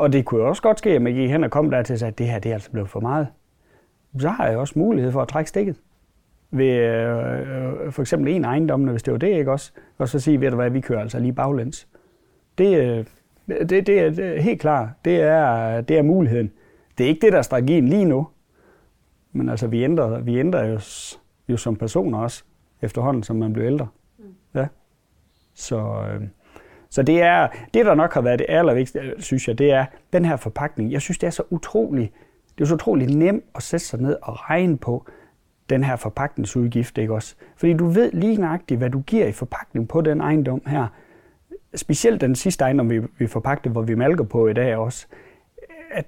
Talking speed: 210 wpm